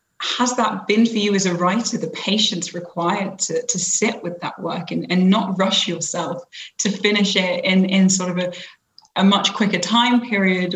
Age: 20-39